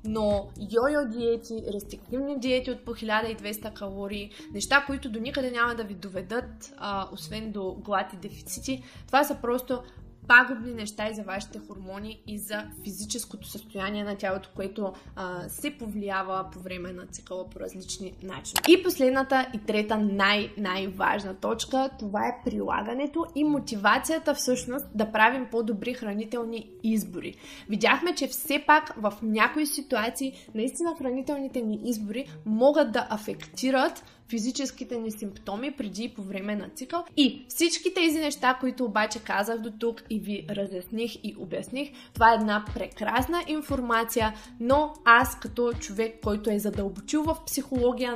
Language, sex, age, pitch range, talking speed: Bulgarian, female, 20-39, 210-260 Hz, 145 wpm